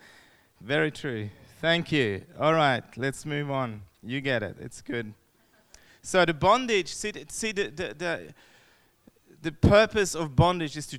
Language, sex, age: English, male, 30-49